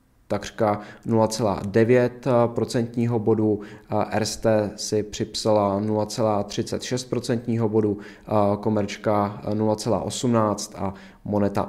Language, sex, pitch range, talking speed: Czech, male, 100-120 Hz, 60 wpm